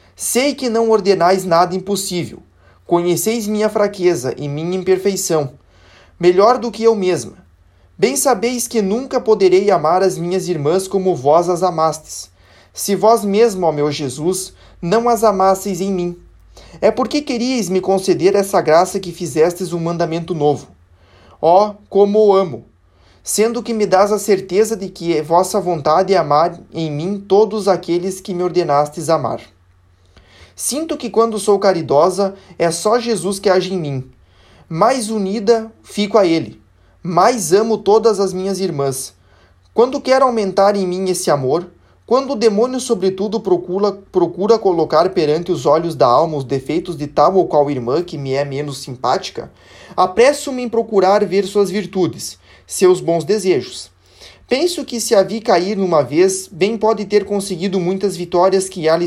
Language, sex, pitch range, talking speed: Portuguese, male, 155-210 Hz, 160 wpm